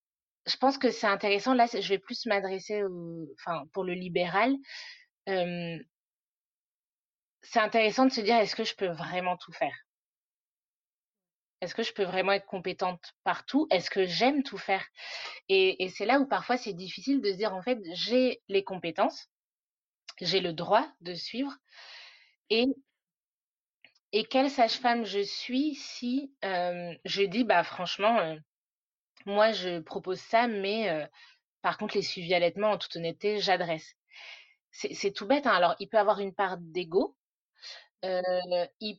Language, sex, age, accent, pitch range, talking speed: French, female, 30-49, French, 180-230 Hz, 160 wpm